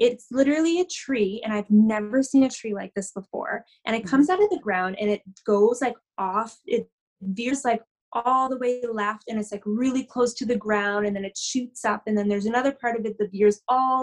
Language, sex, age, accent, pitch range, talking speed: English, female, 20-39, American, 205-250 Hz, 235 wpm